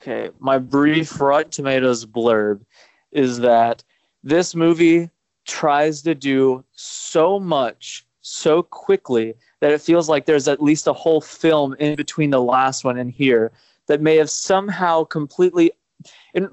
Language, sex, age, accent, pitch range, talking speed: English, male, 20-39, American, 125-155 Hz, 145 wpm